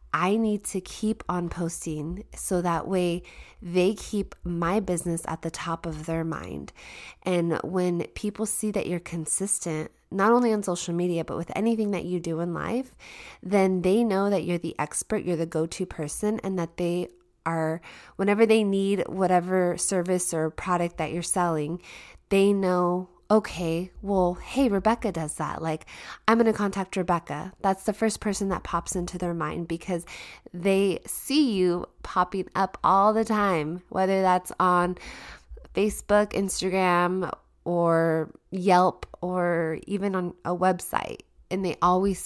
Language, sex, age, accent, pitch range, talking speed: English, female, 20-39, American, 170-195 Hz, 160 wpm